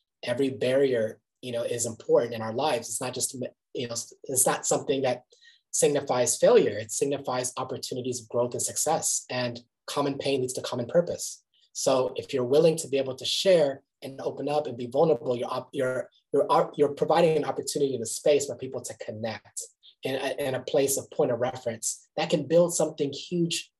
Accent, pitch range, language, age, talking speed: American, 125-170 Hz, English, 20-39, 195 wpm